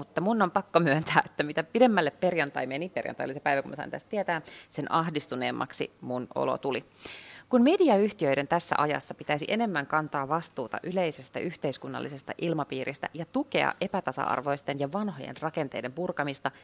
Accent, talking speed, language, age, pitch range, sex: native, 145 wpm, Finnish, 30-49, 140-195 Hz, female